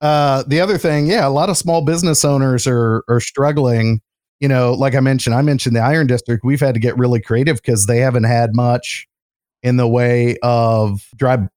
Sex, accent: male, American